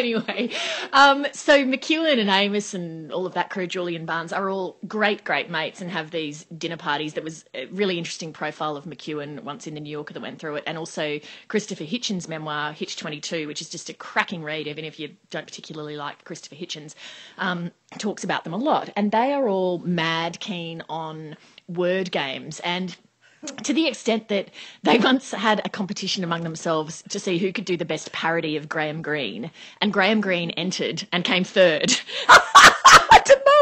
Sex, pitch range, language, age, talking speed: female, 155-205 Hz, English, 30-49, 195 wpm